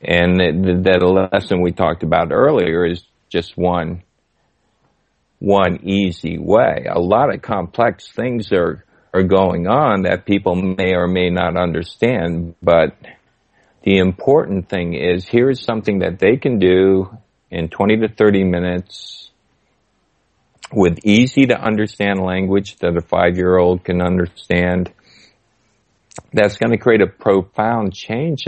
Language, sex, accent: English, male, American